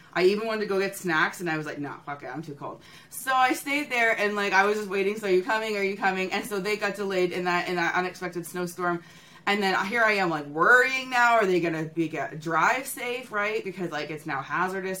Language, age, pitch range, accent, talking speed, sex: English, 20-39, 175-230 Hz, American, 270 wpm, female